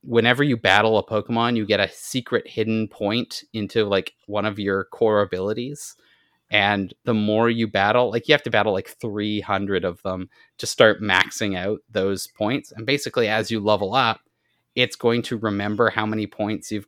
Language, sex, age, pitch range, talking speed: English, male, 30-49, 105-125 Hz, 185 wpm